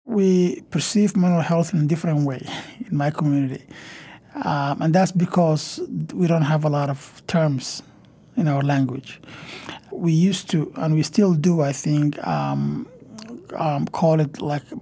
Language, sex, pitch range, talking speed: English, male, 140-170 Hz, 160 wpm